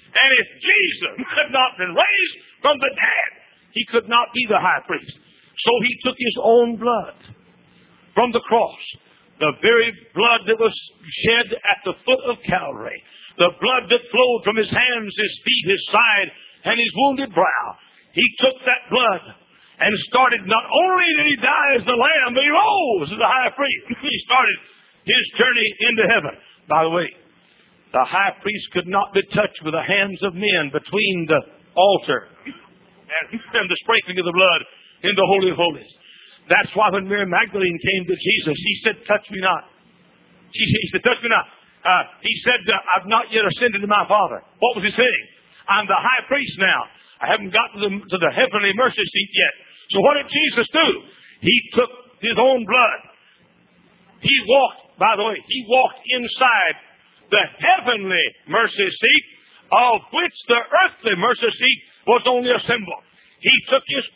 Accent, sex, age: American, male, 60-79